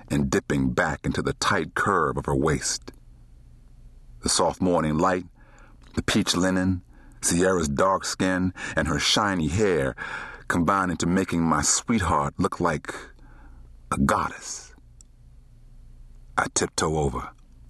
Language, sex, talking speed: English, male, 120 wpm